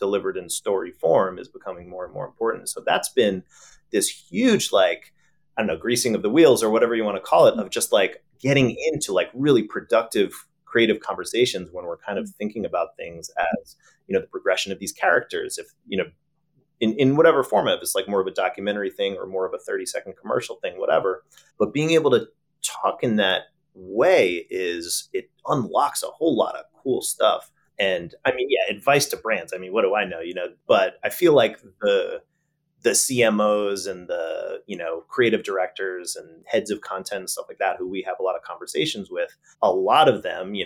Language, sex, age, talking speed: English, male, 30-49, 215 wpm